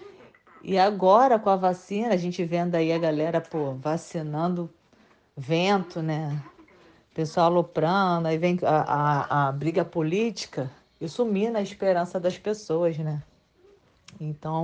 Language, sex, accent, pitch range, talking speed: English, female, Brazilian, 165-210 Hz, 135 wpm